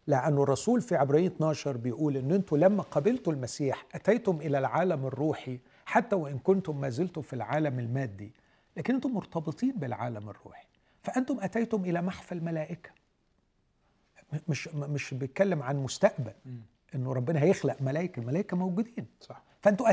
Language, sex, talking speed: Arabic, male, 135 wpm